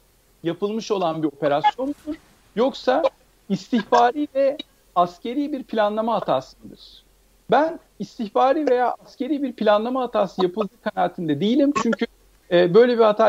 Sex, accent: male, native